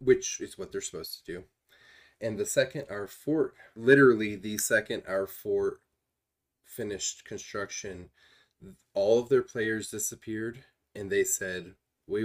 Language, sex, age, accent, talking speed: English, male, 20-39, American, 135 wpm